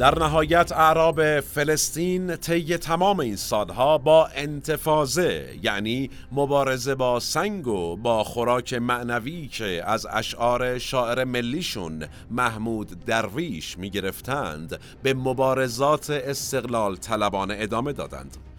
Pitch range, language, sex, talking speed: 105-140 Hz, Persian, male, 105 wpm